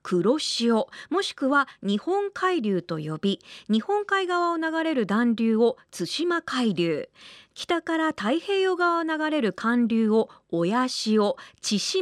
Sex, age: female, 40-59